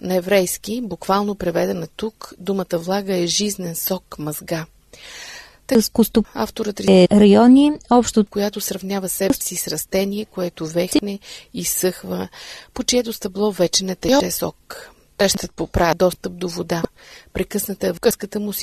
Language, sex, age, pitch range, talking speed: Bulgarian, female, 30-49, 175-220 Hz, 140 wpm